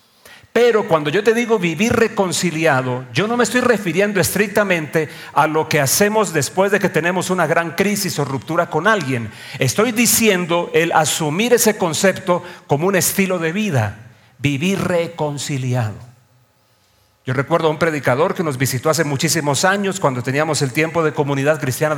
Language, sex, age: English, male, 40-59